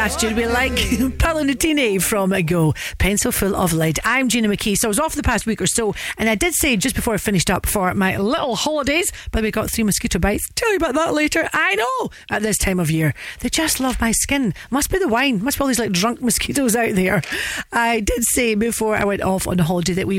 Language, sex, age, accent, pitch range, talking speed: English, female, 40-59, British, 195-265 Hz, 245 wpm